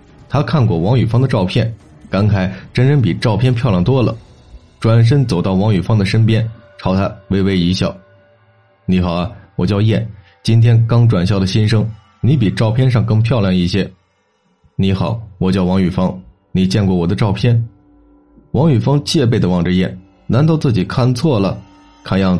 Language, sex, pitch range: Chinese, male, 95-115 Hz